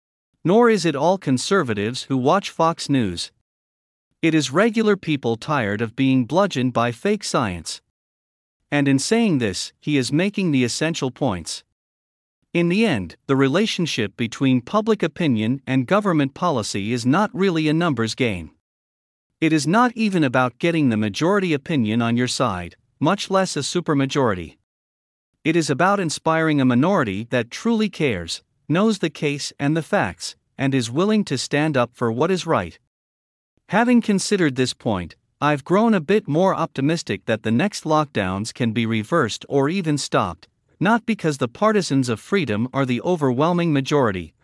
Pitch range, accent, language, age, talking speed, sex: 115-170 Hz, American, English, 50-69, 160 wpm, male